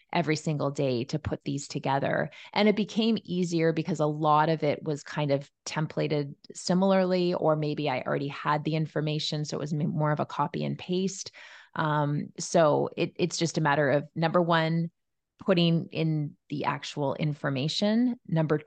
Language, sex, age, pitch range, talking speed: English, female, 30-49, 145-175 Hz, 165 wpm